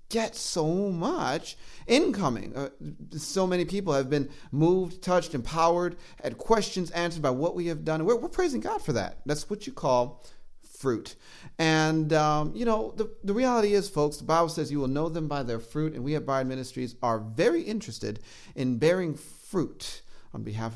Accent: American